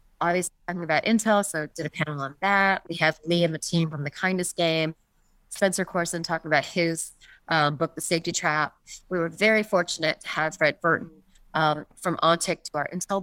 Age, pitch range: 30-49, 150-180 Hz